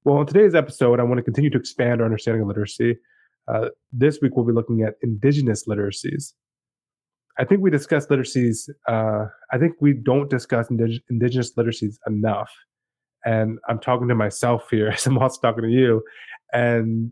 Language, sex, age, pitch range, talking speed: English, male, 20-39, 115-135 Hz, 180 wpm